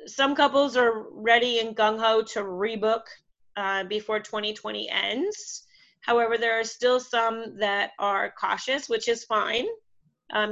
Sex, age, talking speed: female, 30-49, 135 wpm